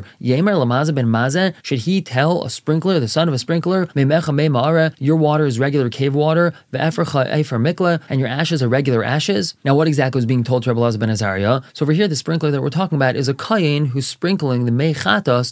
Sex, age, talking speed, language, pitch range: male, 20-39, 215 wpm, English, 125-160 Hz